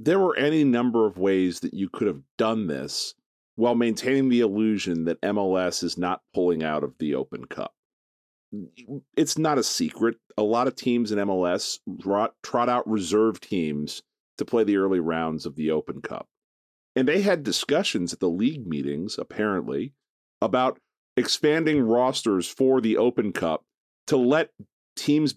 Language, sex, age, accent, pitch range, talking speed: English, male, 40-59, American, 90-130 Hz, 165 wpm